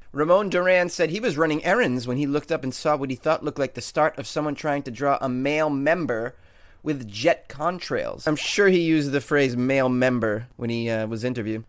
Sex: male